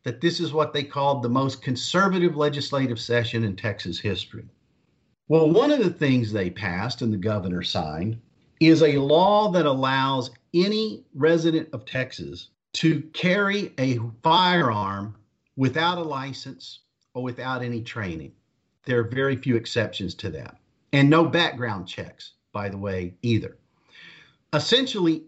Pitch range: 120-165 Hz